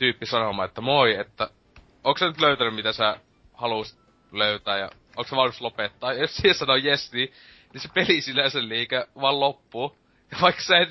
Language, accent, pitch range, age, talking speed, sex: Finnish, native, 105-125 Hz, 20-39, 200 wpm, male